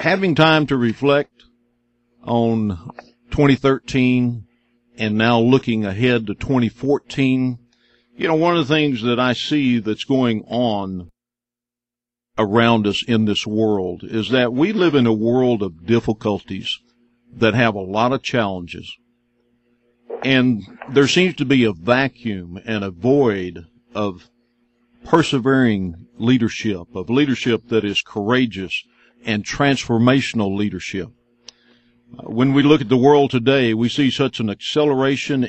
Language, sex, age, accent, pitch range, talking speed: English, male, 50-69, American, 110-130 Hz, 130 wpm